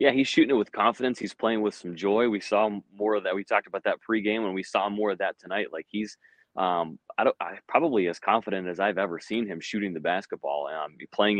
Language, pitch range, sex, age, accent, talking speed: English, 90-110 Hz, male, 30-49, American, 230 wpm